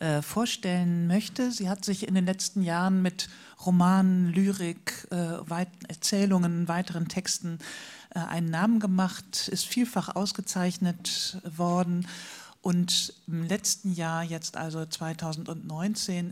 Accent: German